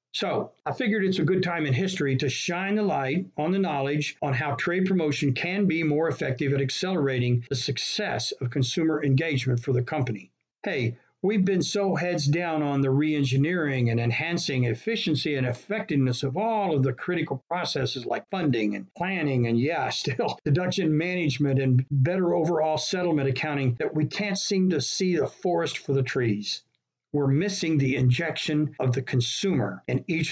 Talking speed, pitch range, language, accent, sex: 175 wpm, 135-175 Hz, English, American, male